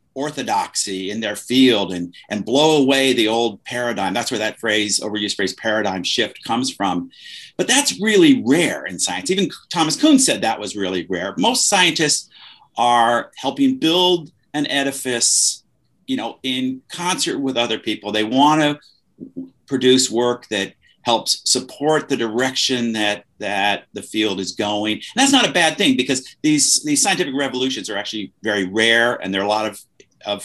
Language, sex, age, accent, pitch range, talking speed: English, male, 50-69, American, 115-175 Hz, 170 wpm